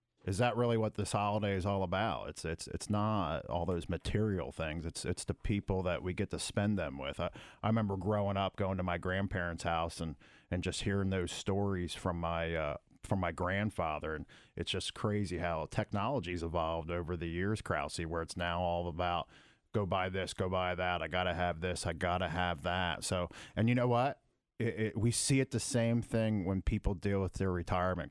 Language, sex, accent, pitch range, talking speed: English, male, American, 90-115 Hz, 210 wpm